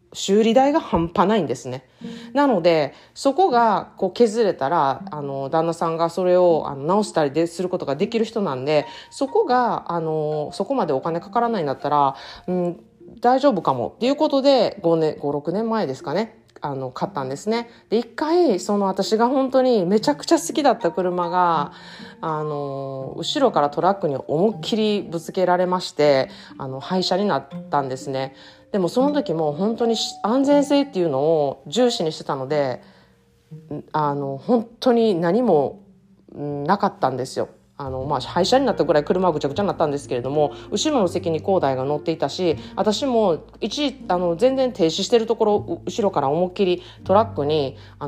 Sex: female